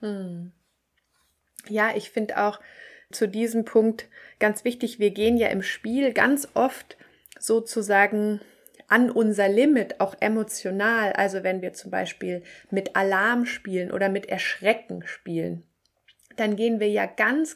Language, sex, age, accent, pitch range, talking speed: German, female, 20-39, German, 195-230 Hz, 135 wpm